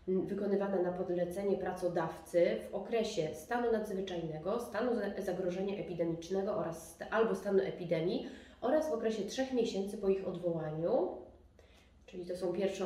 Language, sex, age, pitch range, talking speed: Polish, female, 20-39, 175-210 Hz, 120 wpm